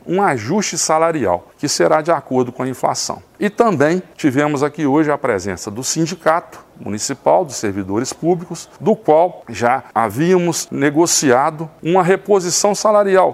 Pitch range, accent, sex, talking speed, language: 135-180 Hz, Brazilian, male, 140 wpm, Portuguese